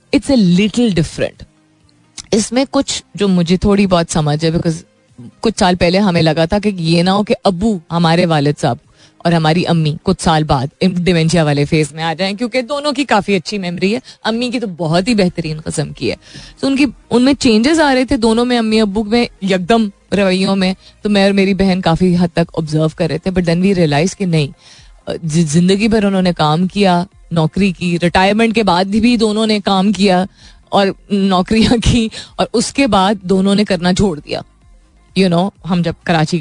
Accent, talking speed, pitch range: native, 195 wpm, 165-215 Hz